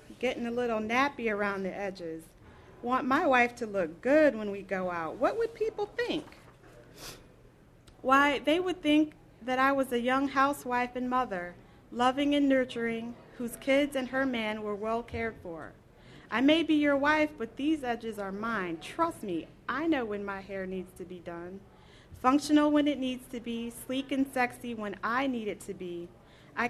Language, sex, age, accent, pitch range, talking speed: English, female, 40-59, American, 215-275 Hz, 185 wpm